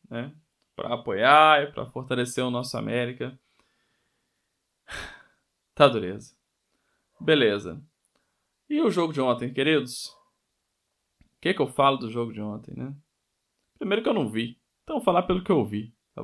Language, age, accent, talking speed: Portuguese, 20-39, Brazilian, 150 wpm